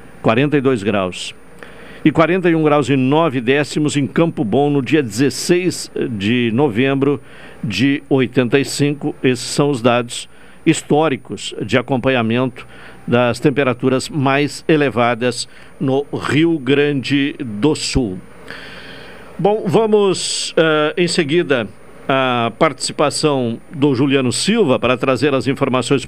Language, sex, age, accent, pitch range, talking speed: Portuguese, male, 60-79, Brazilian, 130-160 Hz, 110 wpm